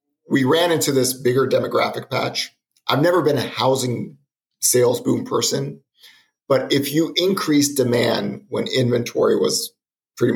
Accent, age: American, 50-69